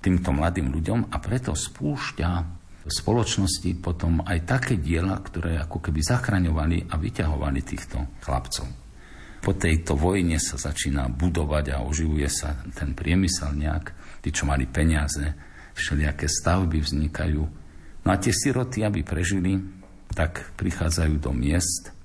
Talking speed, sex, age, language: 135 wpm, male, 50-69, Slovak